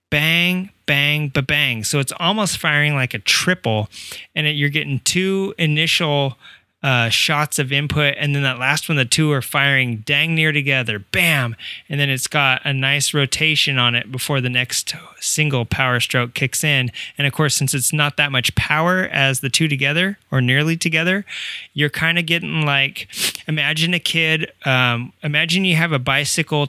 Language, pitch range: English, 130-160 Hz